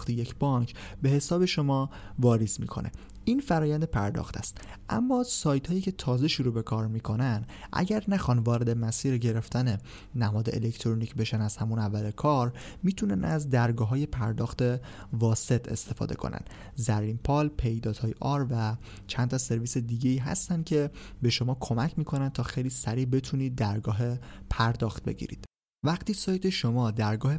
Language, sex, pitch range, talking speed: Persian, male, 115-140 Hz, 145 wpm